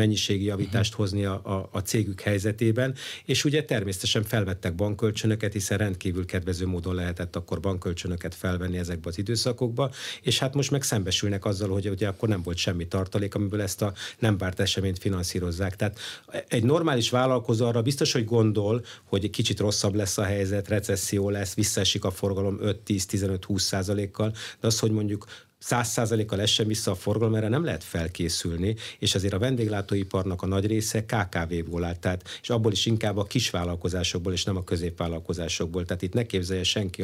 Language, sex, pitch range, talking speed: Hungarian, male, 95-110 Hz, 165 wpm